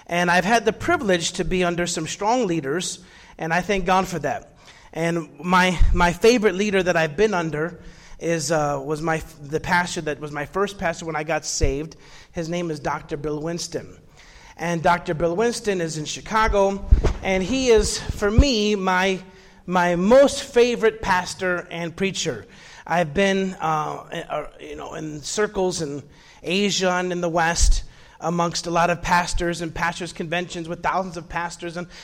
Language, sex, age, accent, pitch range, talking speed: English, male, 30-49, American, 160-190 Hz, 175 wpm